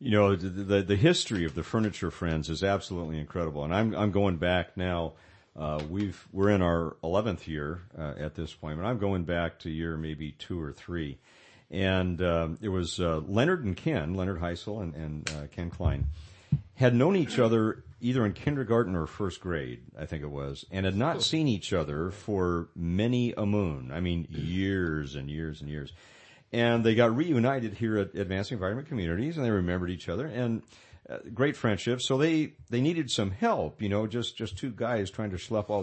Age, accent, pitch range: 50-69, American, 85-115 Hz